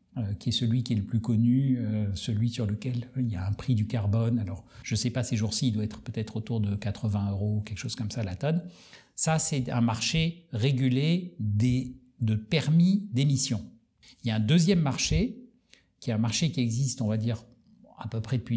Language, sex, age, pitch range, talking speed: French, male, 60-79, 110-135 Hz, 220 wpm